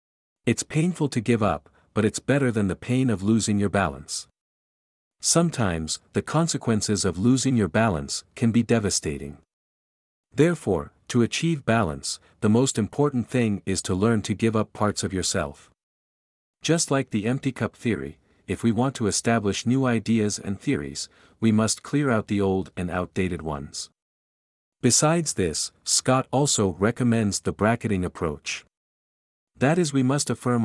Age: 50-69